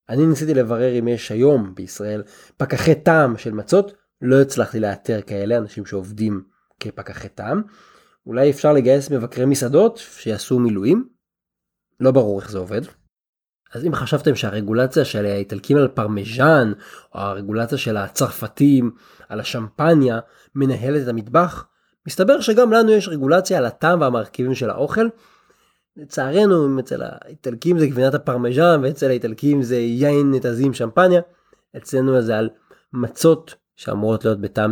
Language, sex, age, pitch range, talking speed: Hebrew, male, 20-39, 115-165 Hz, 135 wpm